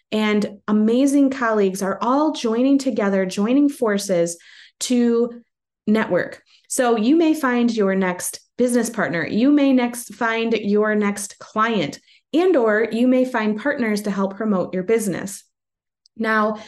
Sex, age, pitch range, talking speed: female, 20-39, 205-255 Hz, 135 wpm